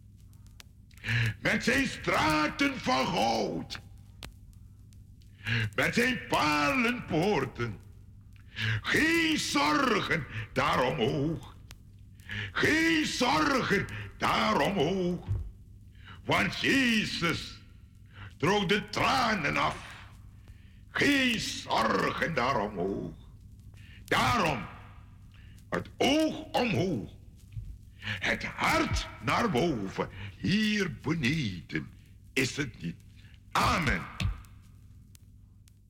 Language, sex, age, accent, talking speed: Dutch, male, 60-79, American, 60 wpm